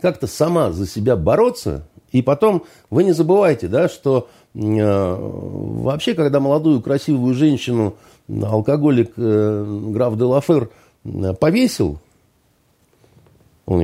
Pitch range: 100-155 Hz